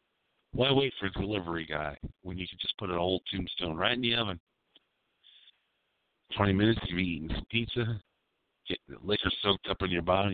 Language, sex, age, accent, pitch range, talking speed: English, male, 50-69, American, 90-130 Hz, 185 wpm